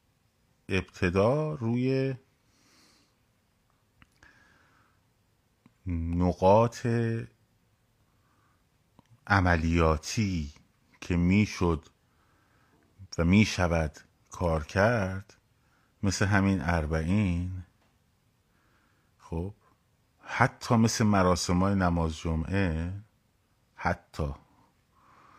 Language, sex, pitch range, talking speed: Persian, male, 90-115 Hz, 50 wpm